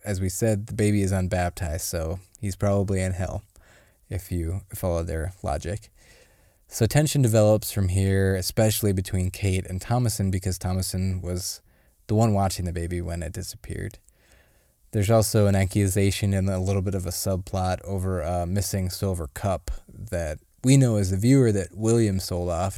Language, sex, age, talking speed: English, male, 20-39, 170 wpm